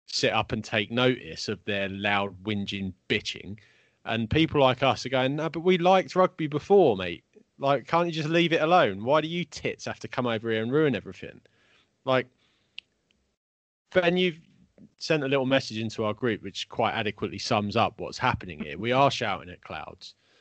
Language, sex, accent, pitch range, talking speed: English, male, British, 110-155 Hz, 190 wpm